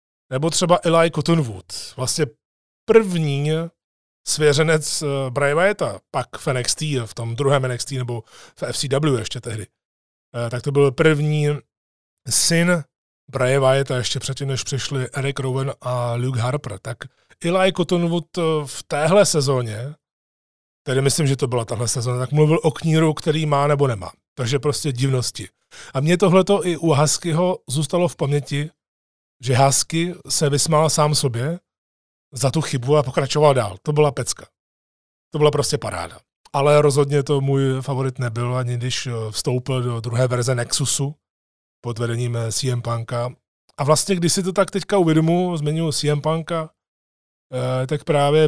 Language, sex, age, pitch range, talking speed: Czech, male, 30-49, 125-150 Hz, 145 wpm